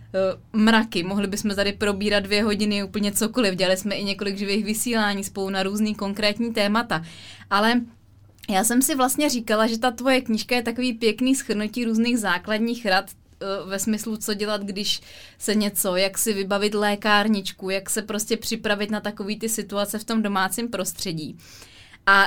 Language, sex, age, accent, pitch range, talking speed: Czech, female, 20-39, native, 195-230 Hz, 165 wpm